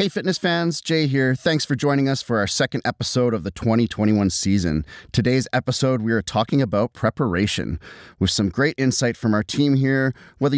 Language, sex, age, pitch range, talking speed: English, male, 30-49, 100-135 Hz, 185 wpm